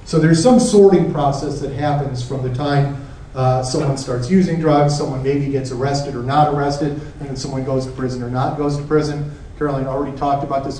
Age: 40-59